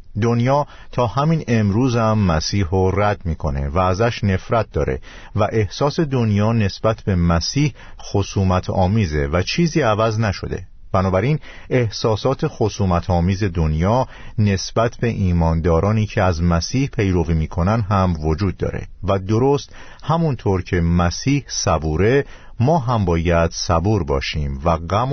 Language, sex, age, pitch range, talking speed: Persian, male, 50-69, 85-120 Hz, 130 wpm